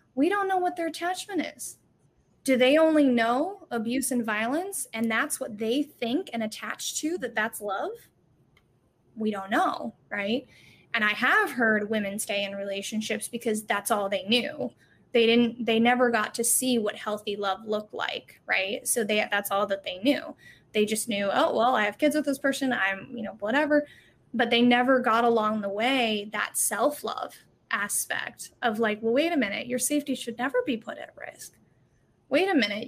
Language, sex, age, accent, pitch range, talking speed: English, female, 10-29, American, 220-280 Hz, 190 wpm